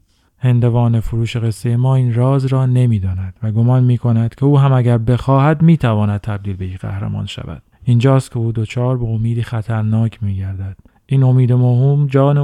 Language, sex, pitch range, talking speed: Persian, male, 110-125 Hz, 185 wpm